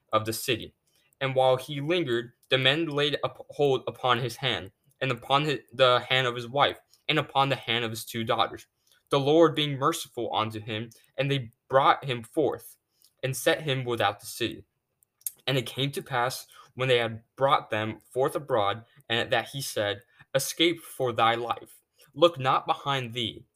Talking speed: 180 wpm